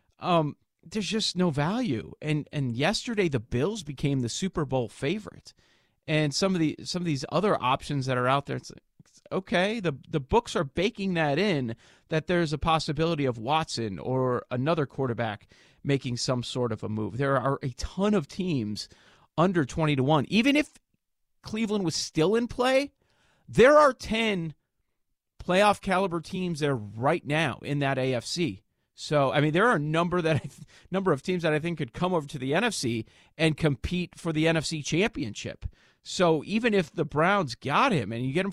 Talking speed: 185 wpm